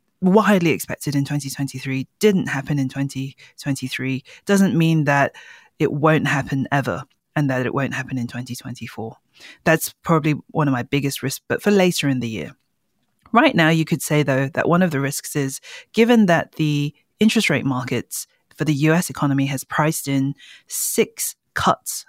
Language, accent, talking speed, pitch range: English, British, 170 wpm, 135-180 Hz